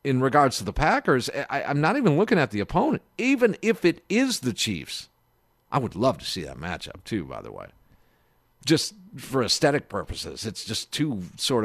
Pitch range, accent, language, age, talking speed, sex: 120-165 Hz, American, English, 50-69, 195 wpm, male